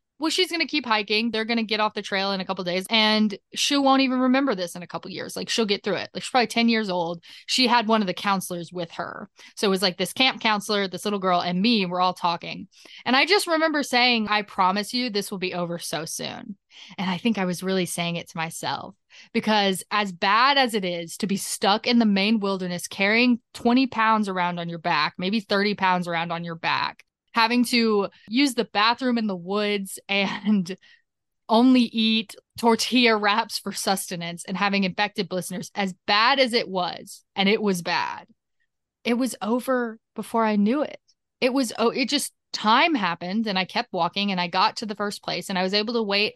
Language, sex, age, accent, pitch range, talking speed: English, female, 20-39, American, 190-240 Hz, 225 wpm